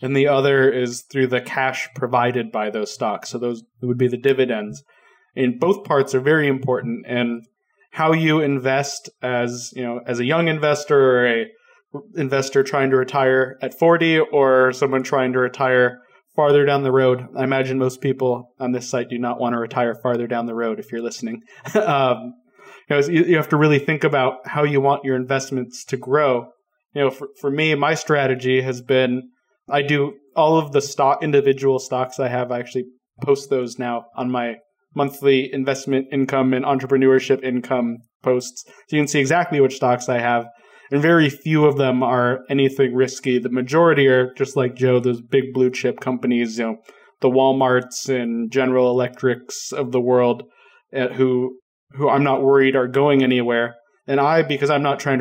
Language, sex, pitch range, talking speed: English, male, 125-140 Hz, 185 wpm